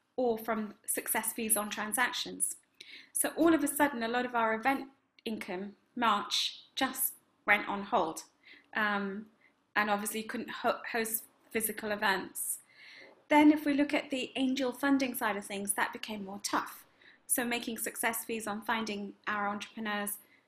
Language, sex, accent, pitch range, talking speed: English, female, British, 215-260 Hz, 150 wpm